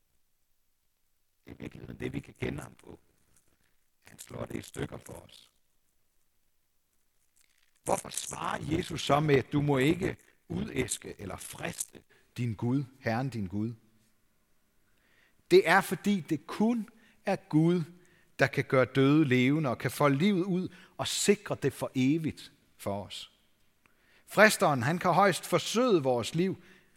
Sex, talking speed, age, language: male, 135 wpm, 60-79, Danish